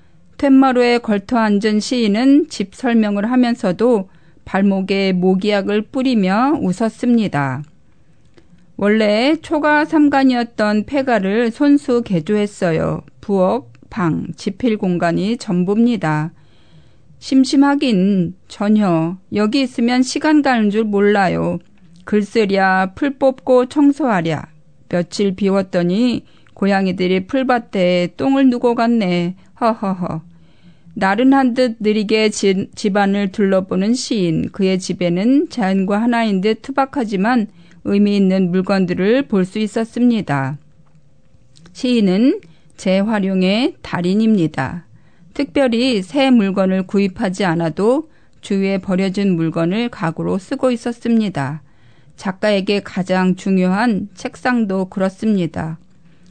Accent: native